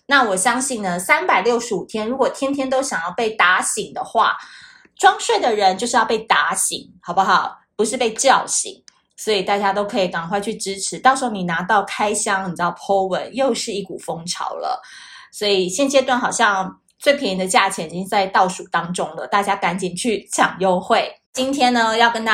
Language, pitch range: Chinese, 195-260 Hz